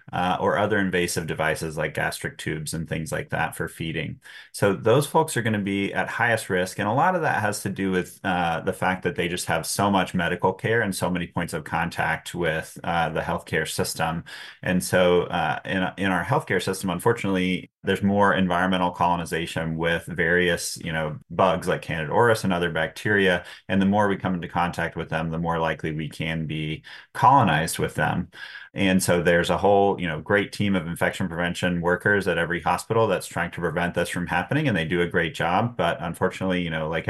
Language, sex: English, male